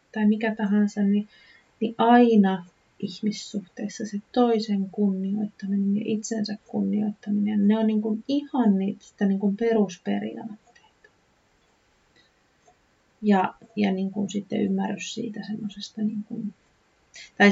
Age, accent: 30-49, native